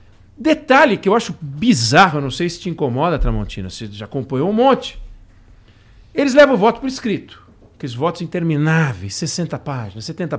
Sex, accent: male, Brazilian